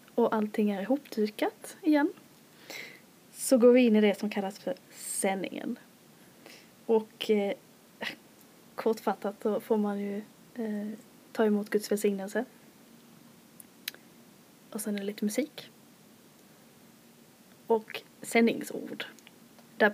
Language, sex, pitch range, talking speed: Swedish, female, 210-235 Hz, 105 wpm